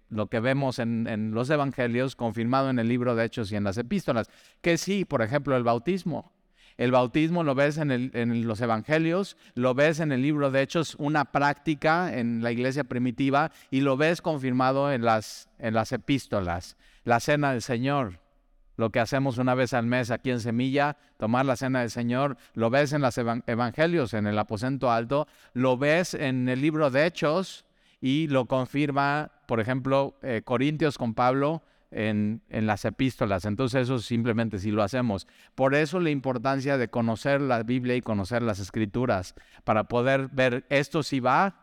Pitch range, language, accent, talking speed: 120-150 Hz, Spanish, Mexican, 185 wpm